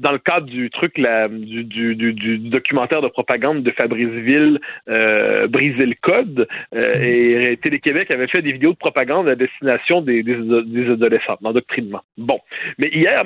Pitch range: 130-205 Hz